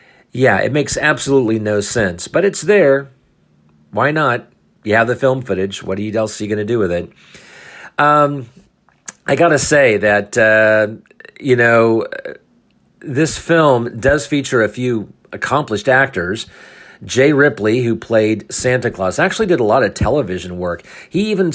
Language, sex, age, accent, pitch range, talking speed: English, male, 50-69, American, 100-135 Hz, 160 wpm